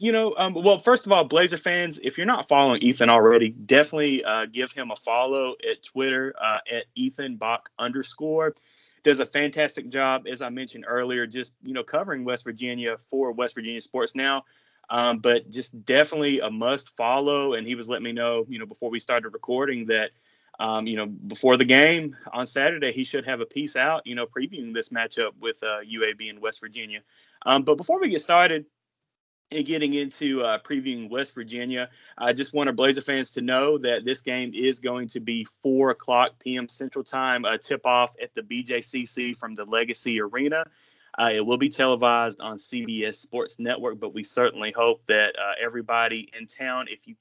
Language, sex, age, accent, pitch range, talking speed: English, male, 30-49, American, 120-145 Hz, 195 wpm